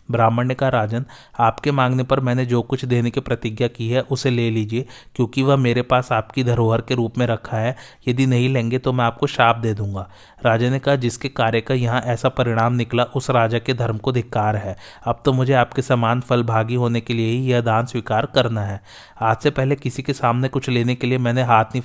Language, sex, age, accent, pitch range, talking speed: Hindi, male, 30-49, native, 115-130 Hz, 220 wpm